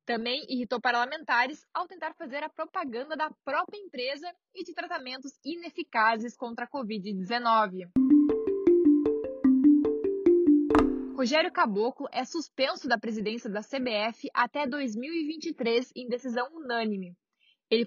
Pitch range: 245-330 Hz